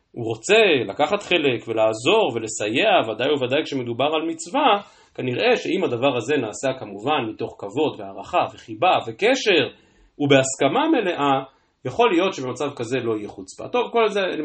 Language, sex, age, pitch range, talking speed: Hebrew, male, 40-59, 120-175 Hz, 145 wpm